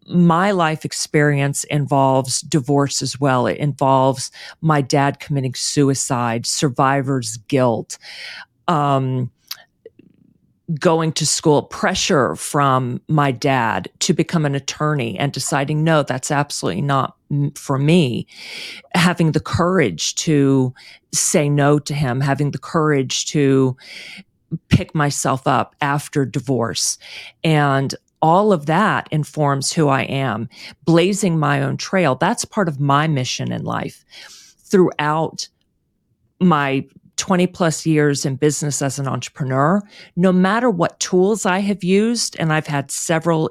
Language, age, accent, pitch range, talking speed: English, 40-59, American, 135-175 Hz, 130 wpm